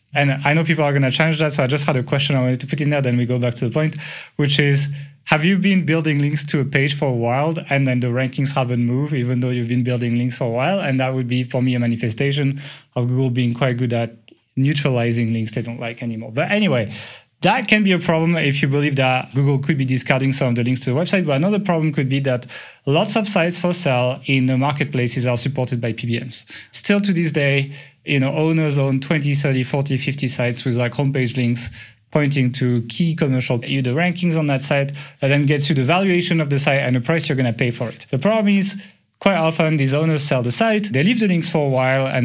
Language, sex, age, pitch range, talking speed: English, male, 20-39, 125-155 Hz, 255 wpm